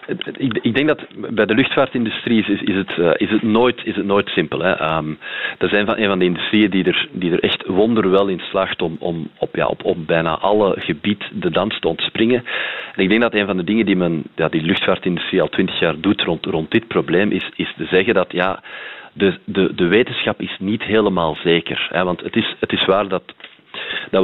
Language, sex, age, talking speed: Dutch, male, 40-59, 225 wpm